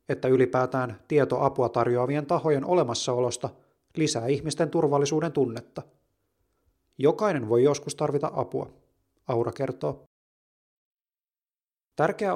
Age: 30-49